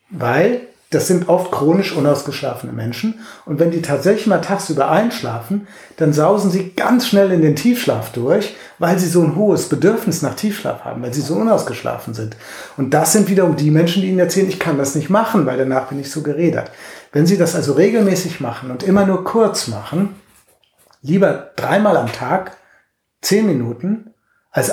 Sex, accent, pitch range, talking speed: male, German, 135-190 Hz, 180 wpm